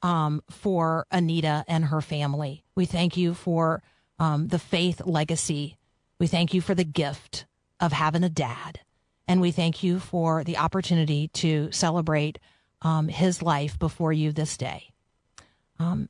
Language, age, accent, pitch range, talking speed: English, 40-59, American, 150-180 Hz, 155 wpm